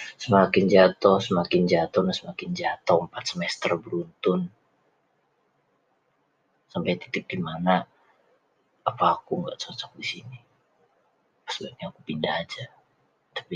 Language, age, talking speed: Indonesian, 30-49, 95 wpm